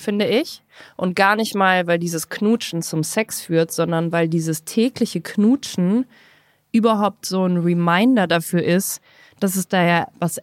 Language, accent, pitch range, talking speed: German, German, 165-200 Hz, 160 wpm